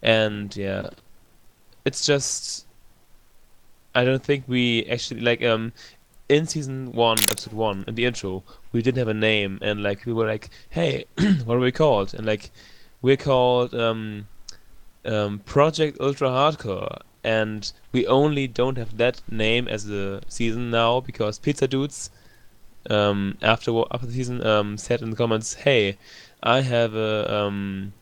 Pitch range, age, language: 100-125 Hz, 10-29, English